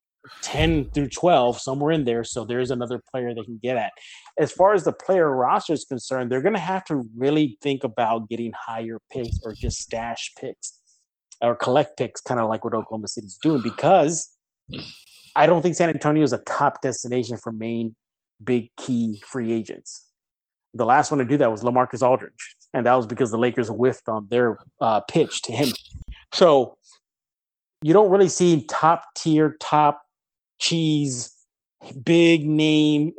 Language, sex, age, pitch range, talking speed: English, male, 30-49, 115-145 Hz, 175 wpm